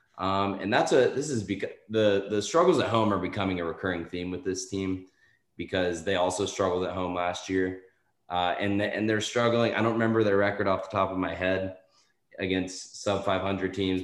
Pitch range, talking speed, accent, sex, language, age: 95-115 Hz, 210 wpm, American, male, English, 20-39